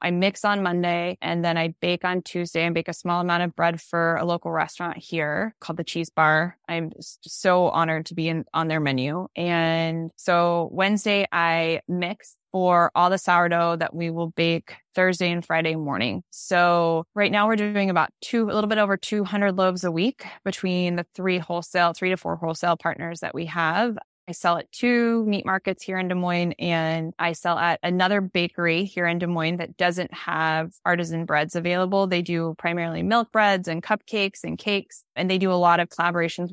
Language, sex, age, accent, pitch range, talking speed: English, female, 20-39, American, 170-190 Hz, 195 wpm